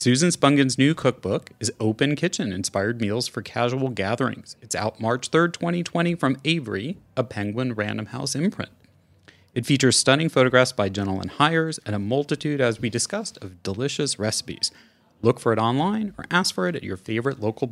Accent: American